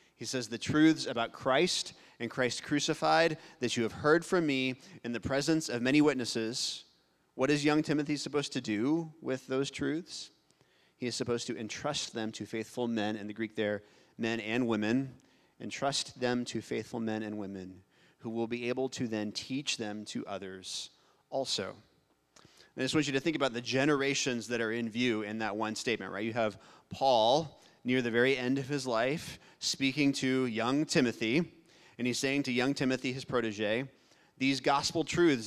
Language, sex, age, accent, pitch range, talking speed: English, male, 30-49, American, 115-140 Hz, 185 wpm